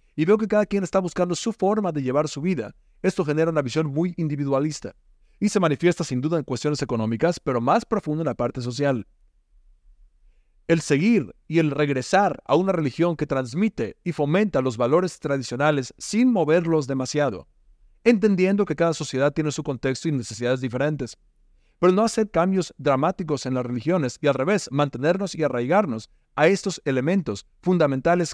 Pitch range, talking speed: 125-170 Hz, 170 wpm